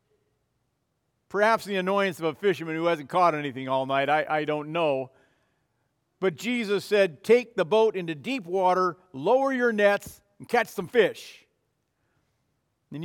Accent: American